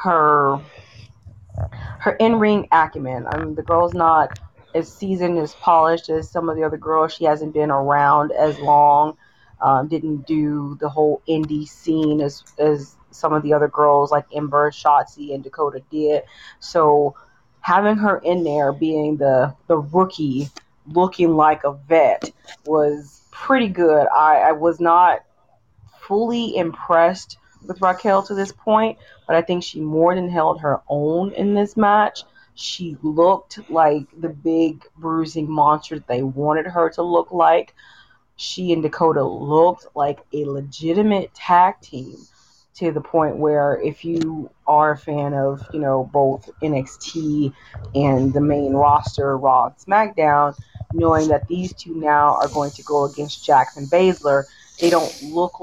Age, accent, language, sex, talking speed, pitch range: 30-49, American, English, female, 155 wpm, 145-170 Hz